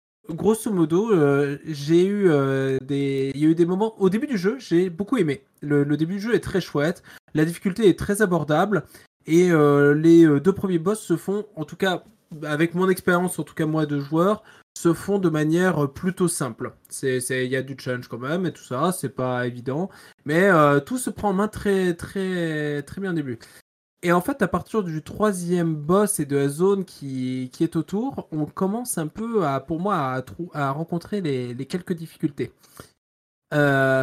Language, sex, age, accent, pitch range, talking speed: French, male, 20-39, French, 145-190 Hz, 210 wpm